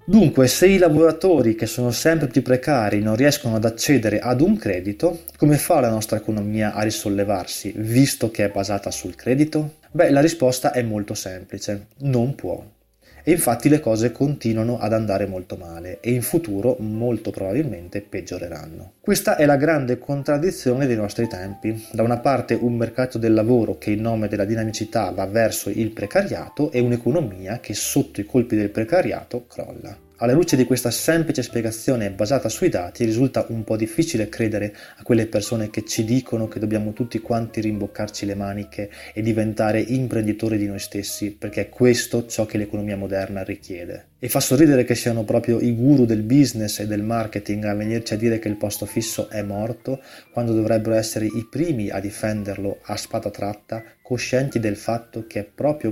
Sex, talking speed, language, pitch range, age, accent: male, 175 wpm, Italian, 105-120 Hz, 20-39, native